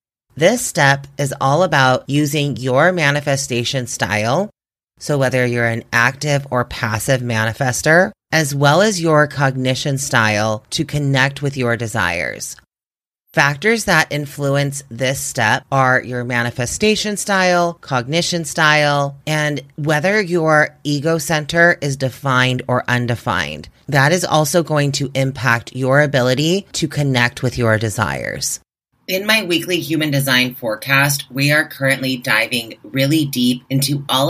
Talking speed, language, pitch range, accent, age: 130 wpm, English, 125-155 Hz, American, 30-49